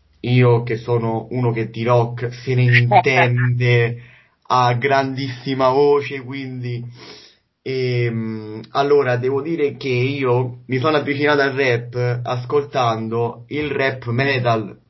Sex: male